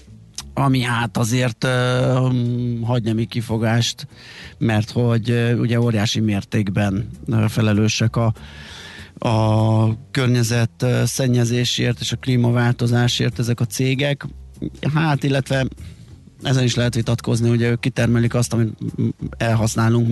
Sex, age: male, 30-49